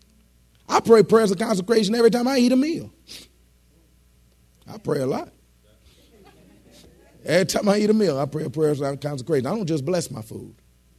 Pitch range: 95-125 Hz